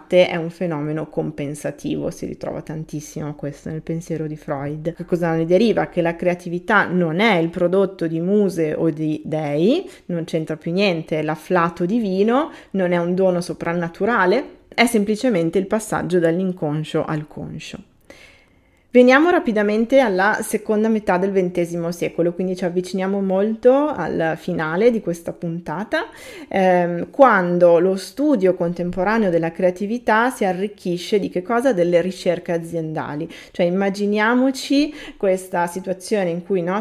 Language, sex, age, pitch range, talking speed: Italian, female, 20-39, 170-210 Hz, 140 wpm